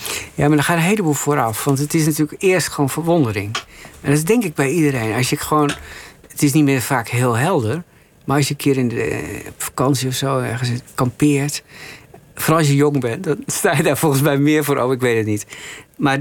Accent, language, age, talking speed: Dutch, Dutch, 50-69, 215 wpm